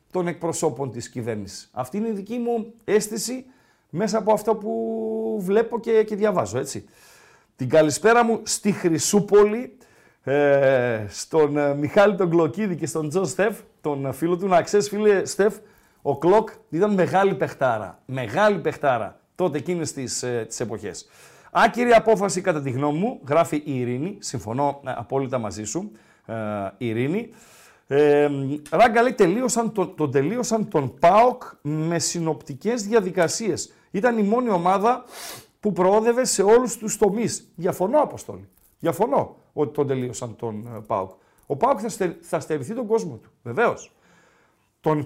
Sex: male